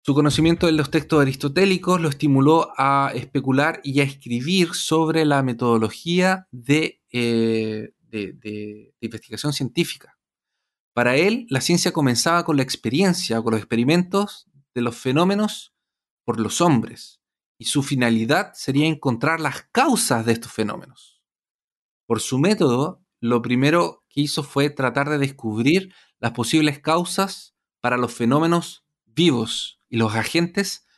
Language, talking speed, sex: Spanish, 130 wpm, male